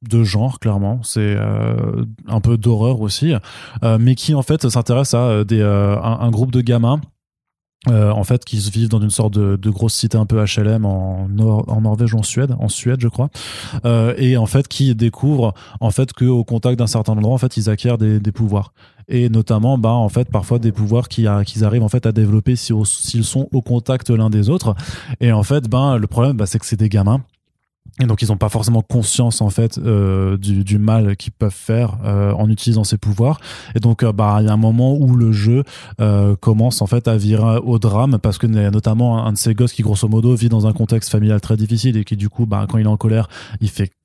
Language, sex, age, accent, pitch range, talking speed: French, male, 20-39, French, 105-120 Hz, 245 wpm